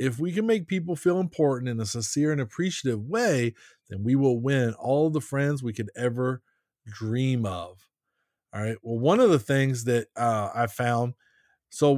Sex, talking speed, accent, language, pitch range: male, 185 wpm, American, English, 120-165 Hz